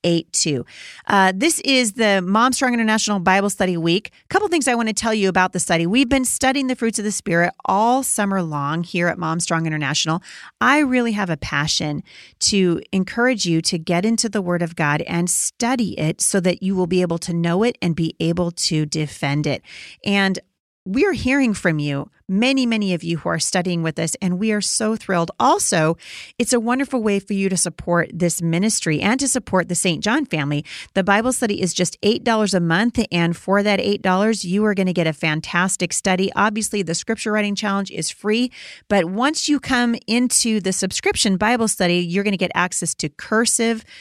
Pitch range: 170-220 Hz